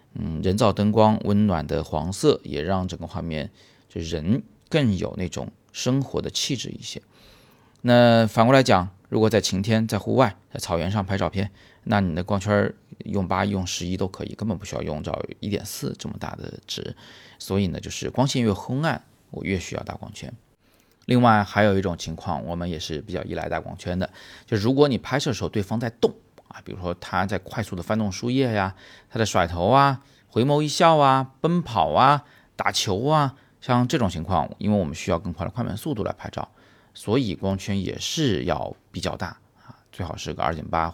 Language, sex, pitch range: Chinese, male, 90-120 Hz